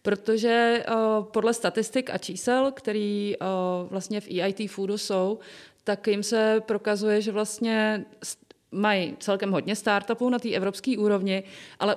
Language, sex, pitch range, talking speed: Czech, female, 190-215 Hz, 140 wpm